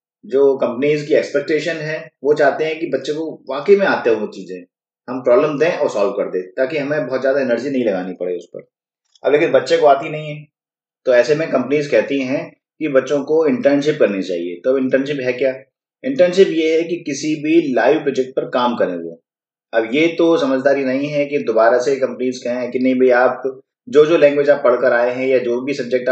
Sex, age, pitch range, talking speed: male, 30-49, 130-165 Hz, 220 wpm